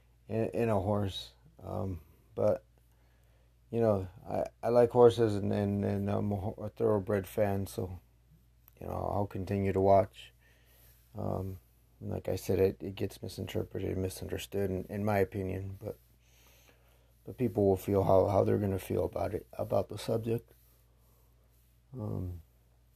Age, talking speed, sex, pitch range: 30-49, 145 wpm, male, 80-105 Hz